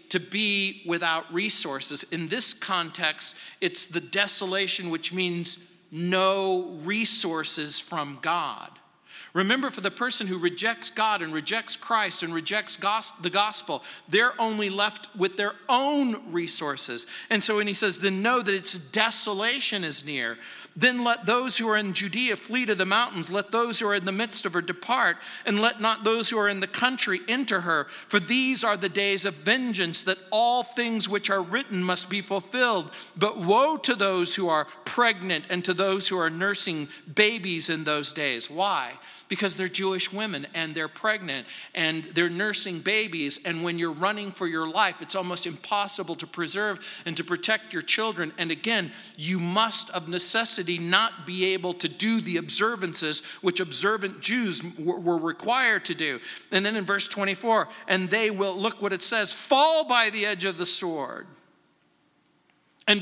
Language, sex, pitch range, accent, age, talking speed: English, male, 175-220 Hz, American, 50-69, 175 wpm